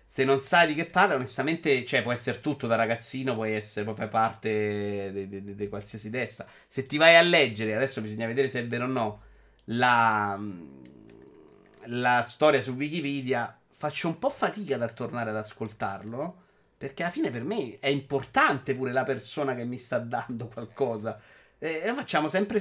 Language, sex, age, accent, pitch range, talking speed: Italian, male, 30-49, native, 110-155 Hz, 175 wpm